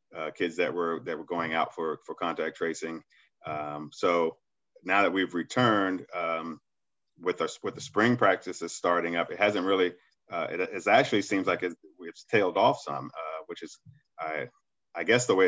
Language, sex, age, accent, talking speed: English, male, 30-49, American, 190 wpm